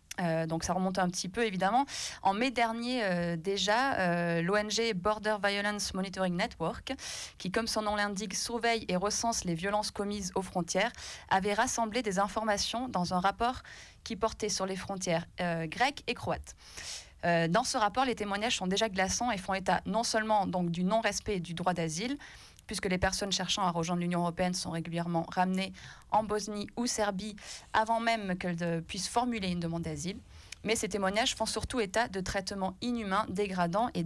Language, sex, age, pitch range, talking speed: French, female, 20-39, 180-220 Hz, 180 wpm